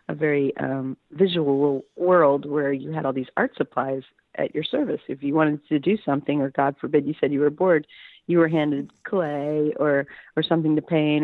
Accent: American